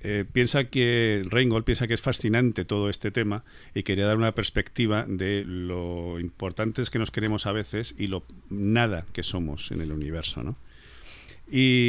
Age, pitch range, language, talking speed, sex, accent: 50-69, 90-115 Hz, Spanish, 165 wpm, male, Spanish